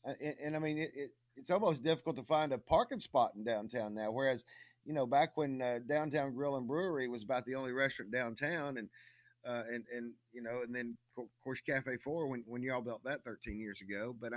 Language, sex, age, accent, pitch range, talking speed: English, male, 50-69, American, 120-150 Hz, 225 wpm